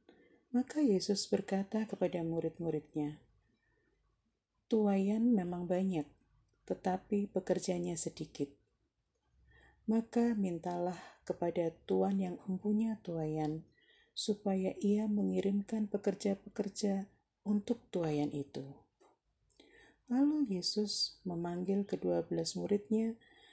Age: 40-59